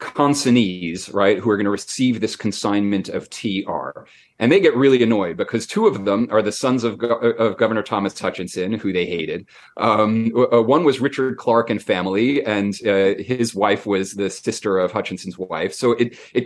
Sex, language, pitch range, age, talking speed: male, English, 100-130 Hz, 30-49, 180 wpm